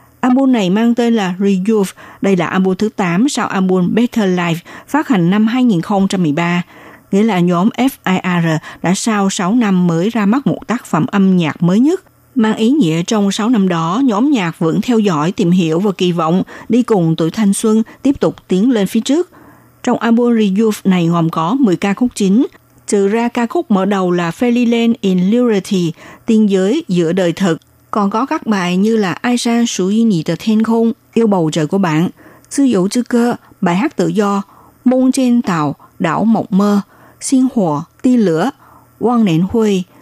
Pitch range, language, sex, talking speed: 175-235 Hz, Vietnamese, female, 190 wpm